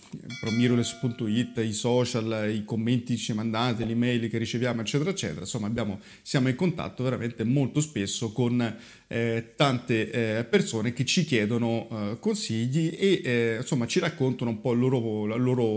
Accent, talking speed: native, 160 wpm